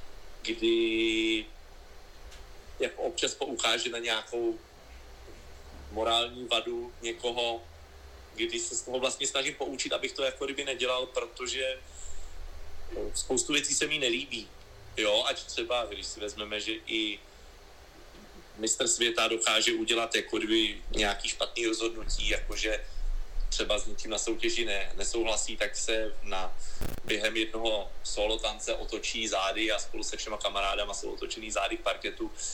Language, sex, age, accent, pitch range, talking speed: Czech, male, 30-49, native, 100-140 Hz, 120 wpm